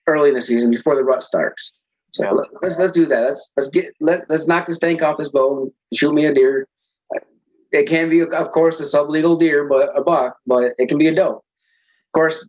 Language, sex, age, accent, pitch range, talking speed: English, male, 20-39, American, 135-160 Hz, 225 wpm